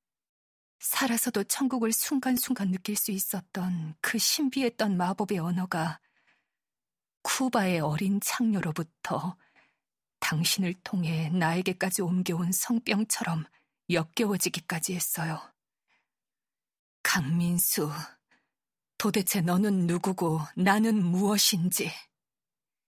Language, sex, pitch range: Korean, female, 175-215 Hz